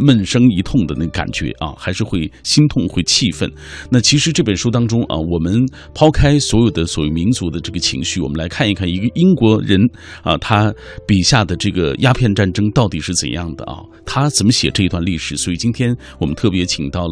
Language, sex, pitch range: Chinese, male, 90-125 Hz